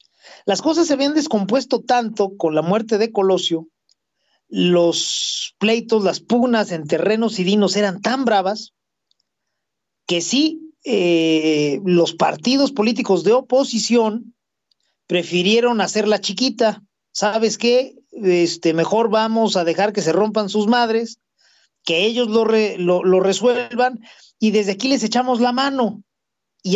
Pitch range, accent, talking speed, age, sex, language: 190-250 Hz, Mexican, 135 wpm, 40-59, male, Spanish